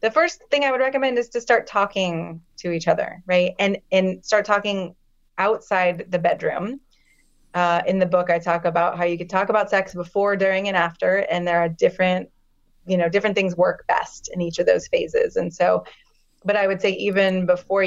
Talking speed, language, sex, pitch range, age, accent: 205 wpm, English, female, 175-205 Hz, 30-49, American